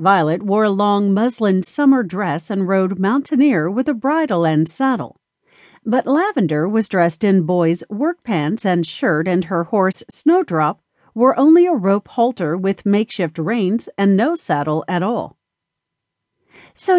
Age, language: 40-59, English